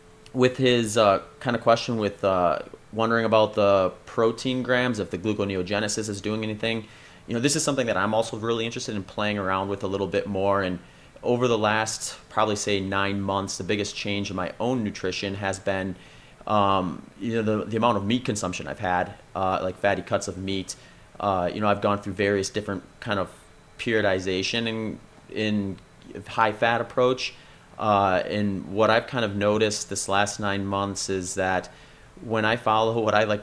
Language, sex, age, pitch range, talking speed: English, male, 30-49, 95-110 Hz, 190 wpm